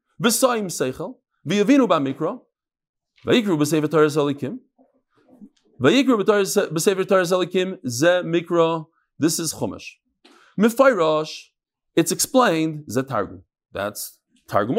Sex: male